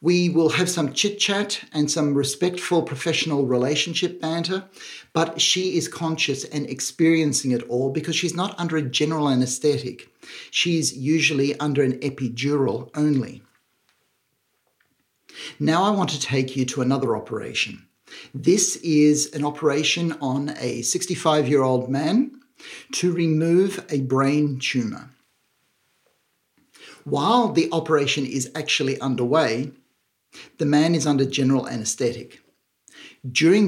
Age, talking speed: 50-69, 120 wpm